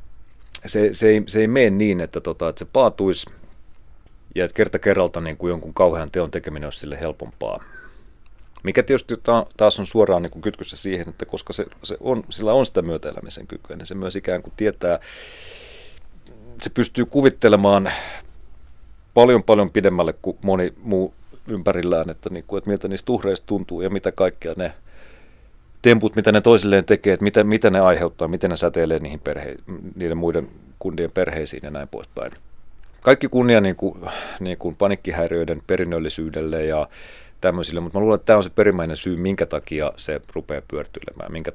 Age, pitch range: 30-49, 85-110 Hz